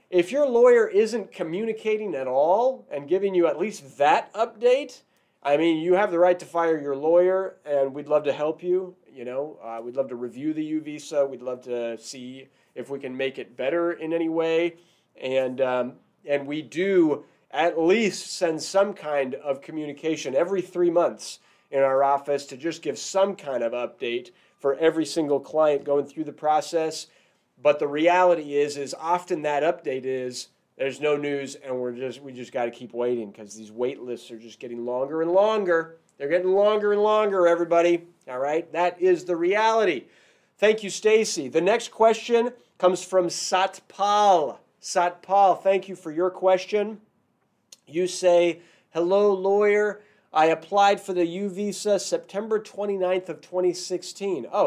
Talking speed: 175 wpm